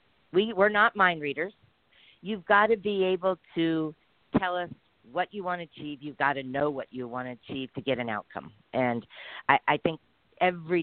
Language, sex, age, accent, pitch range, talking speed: English, female, 50-69, American, 145-205 Hz, 200 wpm